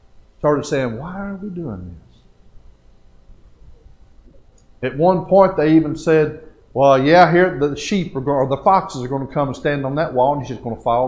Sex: male